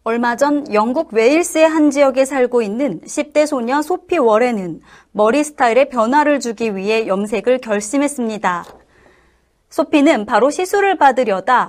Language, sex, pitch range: Korean, female, 225-300 Hz